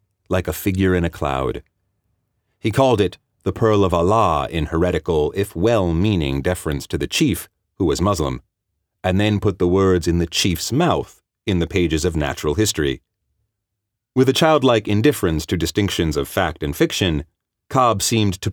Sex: male